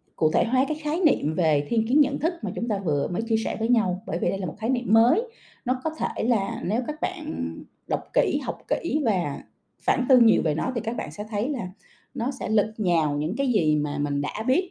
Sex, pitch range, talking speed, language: female, 170-250 Hz, 255 wpm, Vietnamese